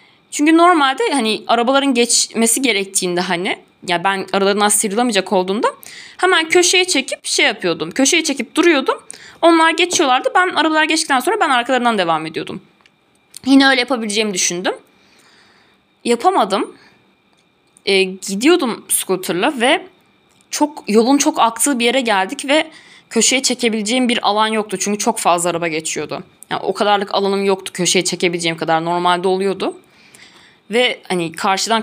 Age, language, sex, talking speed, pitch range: 20-39, Turkish, female, 130 wpm, 190-270 Hz